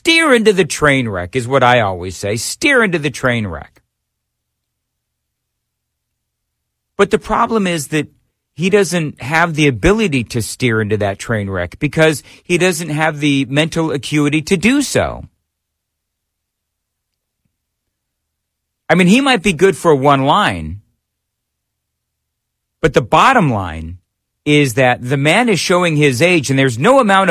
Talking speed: 145 wpm